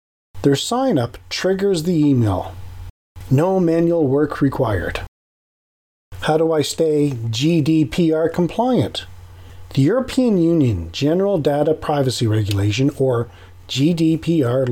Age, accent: 40-59, American